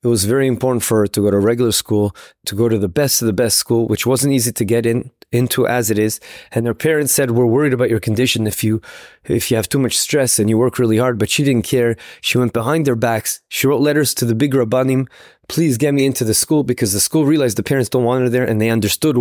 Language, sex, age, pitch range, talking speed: English, male, 20-39, 115-140 Hz, 270 wpm